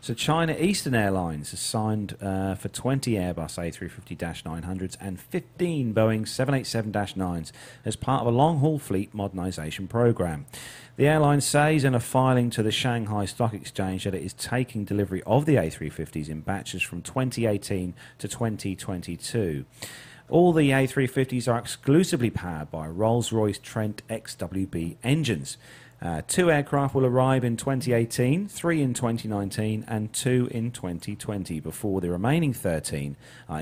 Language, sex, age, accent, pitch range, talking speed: English, male, 40-59, British, 95-130 Hz, 140 wpm